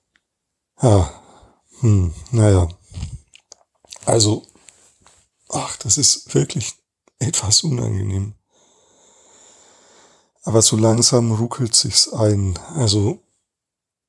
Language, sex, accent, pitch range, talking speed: German, male, German, 105-135 Hz, 80 wpm